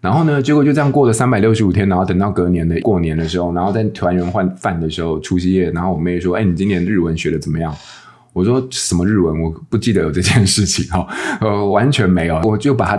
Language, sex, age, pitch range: Chinese, male, 20-39, 90-115 Hz